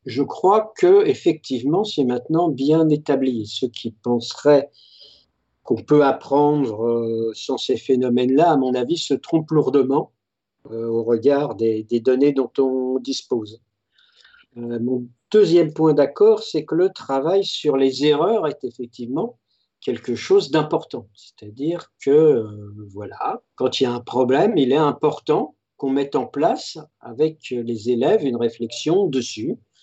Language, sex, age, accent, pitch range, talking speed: French, male, 50-69, French, 120-155 Hz, 145 wpm